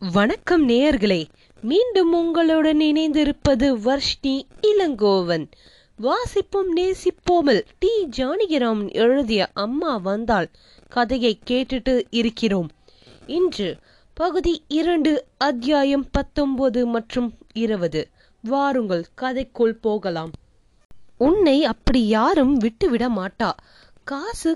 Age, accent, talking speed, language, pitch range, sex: 20-39, native, 60 wpm, Tamil, 225-310 Hz, female